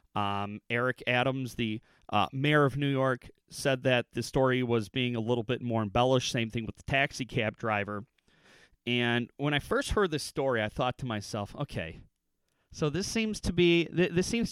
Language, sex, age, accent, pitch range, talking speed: English, male, 30-49, American, 110-140 Hz, 195 wpm